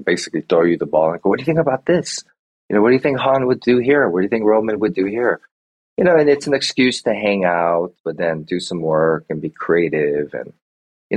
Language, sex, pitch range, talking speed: English, male, 80-125 Hz, 270 wpm